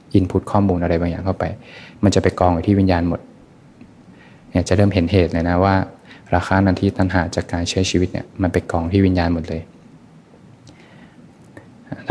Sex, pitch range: male, 85-95 Hz